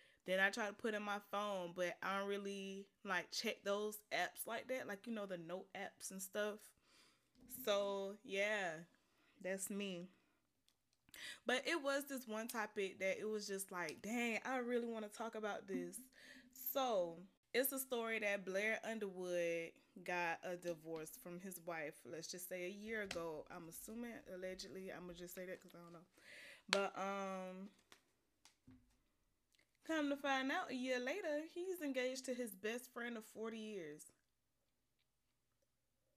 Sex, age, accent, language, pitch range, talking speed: female, 20-39, American, English, 190-250 Hz, 160 wpm